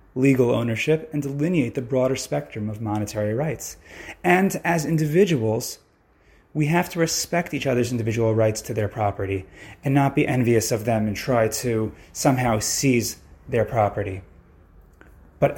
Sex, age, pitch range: male, 30-49, 110-140 Hz